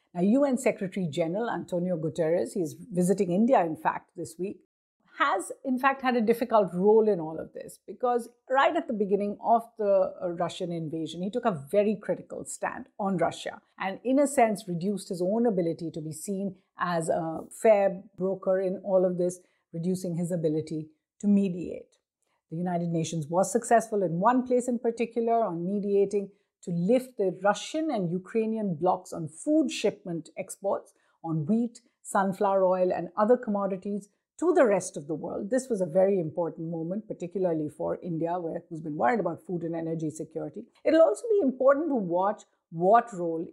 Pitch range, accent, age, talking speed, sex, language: 175-230 Hz, Indian, 50-69, 175 wpm, female, English